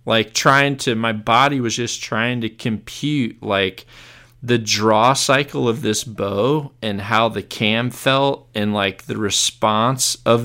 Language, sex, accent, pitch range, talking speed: English, male, American, 105-130 Hz, 155 wpm